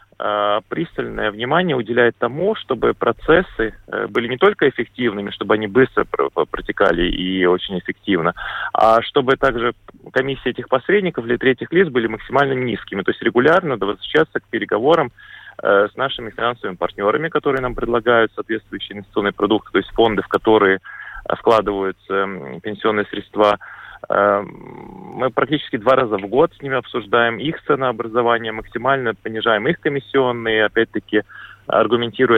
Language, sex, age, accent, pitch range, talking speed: Russian, male, 30-49, native, 105-130 Hz, 130 wpm